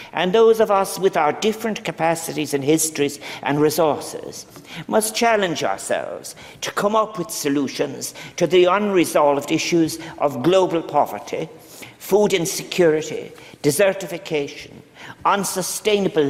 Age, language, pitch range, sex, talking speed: 50-69, English, 155-195 Hz, male, 115 wpm